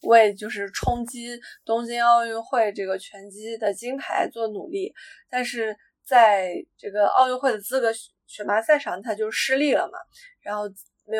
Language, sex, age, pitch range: Chinese, female, 20-39, 215-265 Hz